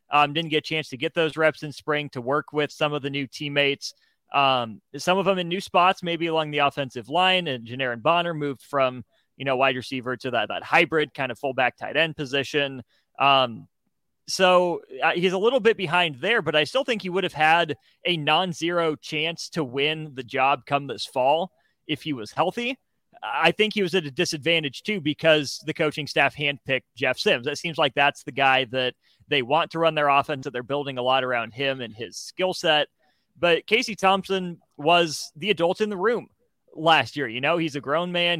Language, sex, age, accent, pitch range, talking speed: English, male, 30-49, American, 140-170 Hz, 215 wpm